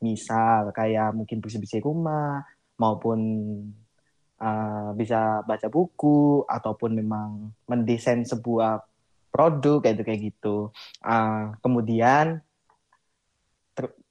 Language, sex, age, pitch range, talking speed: Indonesian, male, 20-39, 115-150 Hz, 85 wpm